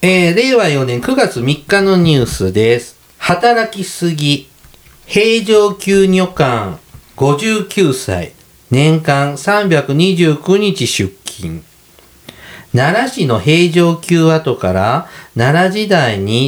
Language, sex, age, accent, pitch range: Japanese, male, 50-69, native, 130-175 Hz